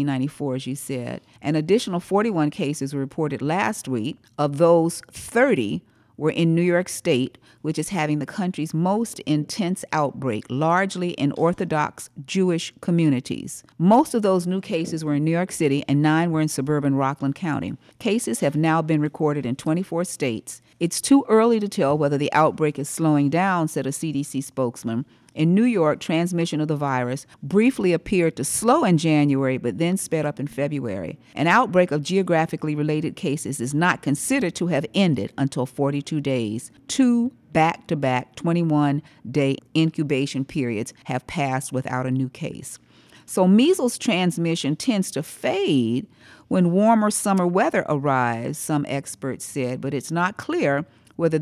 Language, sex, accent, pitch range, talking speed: English, female, American, 135-175 Hz, 160 wpm